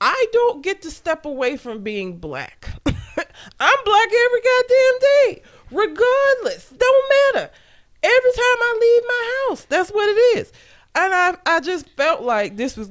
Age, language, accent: 20-39, English, American